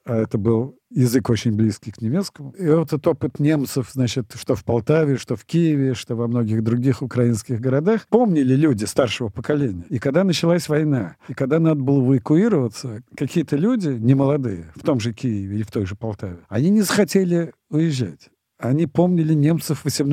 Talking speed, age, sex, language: 175 wpm, 50-69, male, Russian